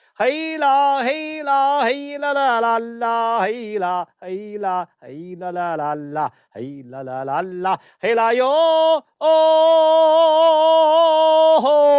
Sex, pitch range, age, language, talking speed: male, 205-315 Hz, 50-69, English, 140 wpm